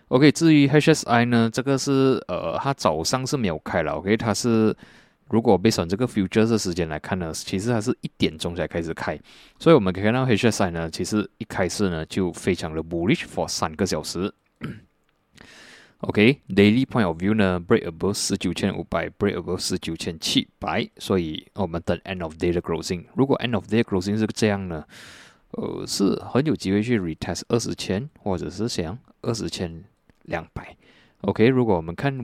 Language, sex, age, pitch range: Chinese, male, 20-39, 85-115 Hz